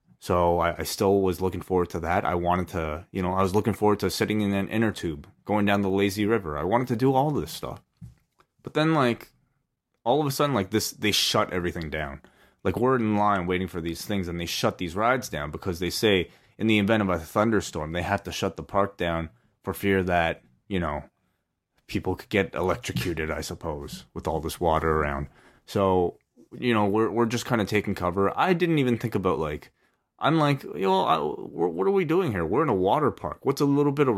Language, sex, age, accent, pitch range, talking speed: English, male, 20-39, American, 85-115 Hz, 230 wpm